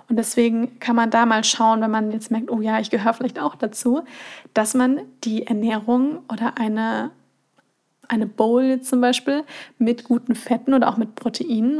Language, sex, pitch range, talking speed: German, female, 225-250 Hz, 180 wpm